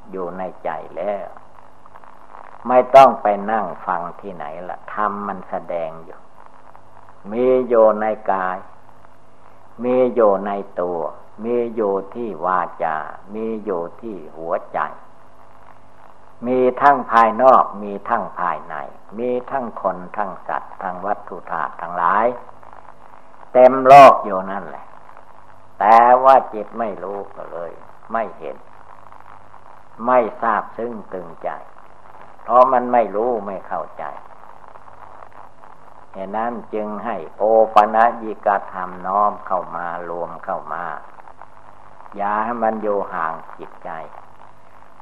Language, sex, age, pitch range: Thai, male, 60-79, 100-120 Hz